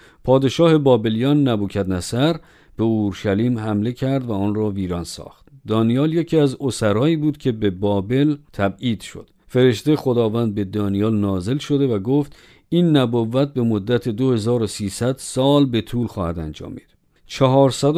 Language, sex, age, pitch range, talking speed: Persian, male, 50-69, 105-135 Hz, 135 wpm